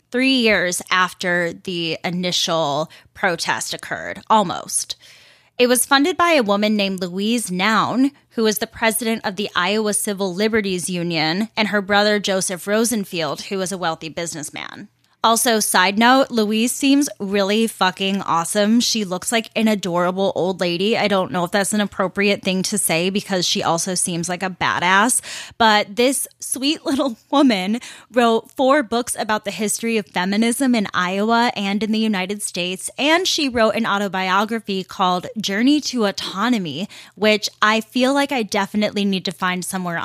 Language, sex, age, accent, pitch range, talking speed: English, female, 10-29, American, 185-230 Hz, 160 wpm